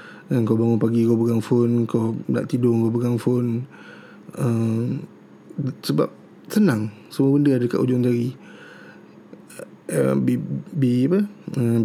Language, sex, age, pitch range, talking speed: Malay, male, 20-39, 120-150 Hz, 120 wpm